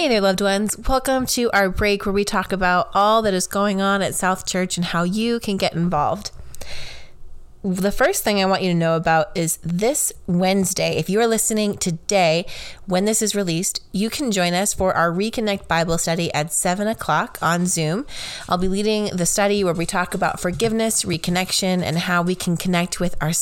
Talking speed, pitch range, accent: 200 wpm, 170-200 Hz, American